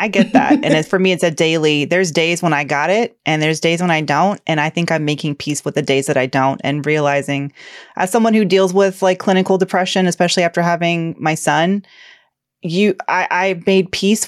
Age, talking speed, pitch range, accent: 30-49, 225 wpm, 150-180 Hz, American